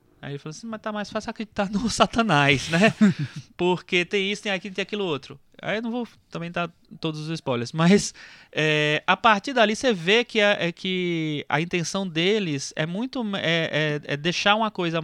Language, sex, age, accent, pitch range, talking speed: Portuguese, male, 20-39, Brazilian, 135-195 Hz, 210 wpm